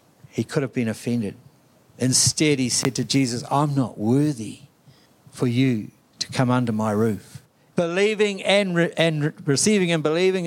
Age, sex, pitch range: 60-79, male, 125-160 Hz